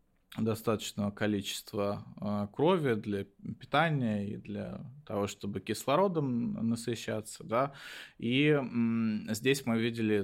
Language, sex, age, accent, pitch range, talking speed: Russian, male, 20-39, native, 105-130 Hz, 95 wpm